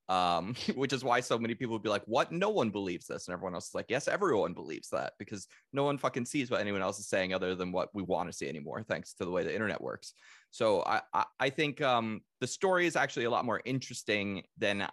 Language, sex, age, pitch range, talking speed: English, male, 30-49, 95-135 Hz, 255 wpm